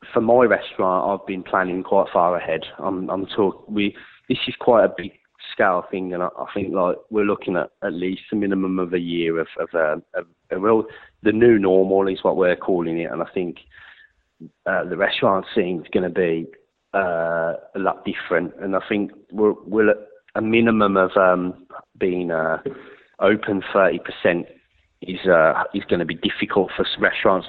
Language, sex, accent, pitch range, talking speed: English, male, British, 85-100 Hz, 190 wpm